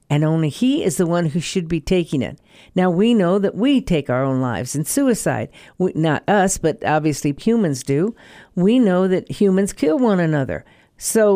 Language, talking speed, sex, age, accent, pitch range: English, 190 wpm, female, 50-69, American, 155-215 Hz